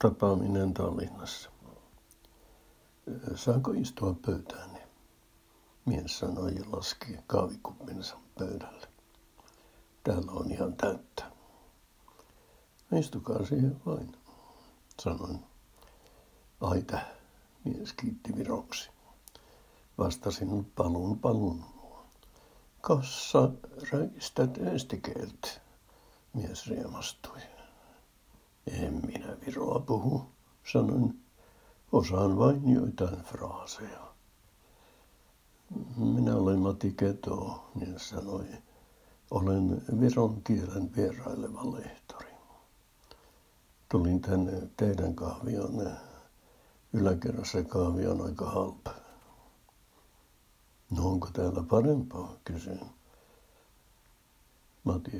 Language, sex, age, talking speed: Finnish, male, 60-79, 70 wpm